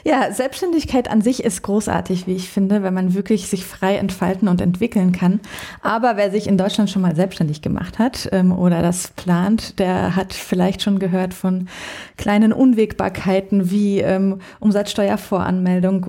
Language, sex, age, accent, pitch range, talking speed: German, female, 30-49, German, 190-215 Hz, 160 wpm